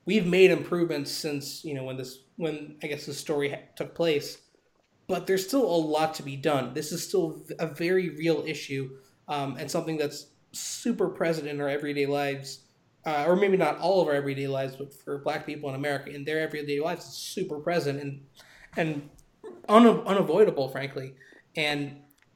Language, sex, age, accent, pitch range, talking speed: English, male, 20-39, American, 140-170 Hz, 180 wpm